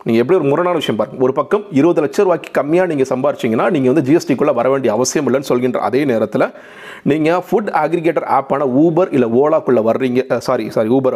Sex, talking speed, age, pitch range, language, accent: male, 190 wpm, 40-59, 125-165 Hz, Tamil, native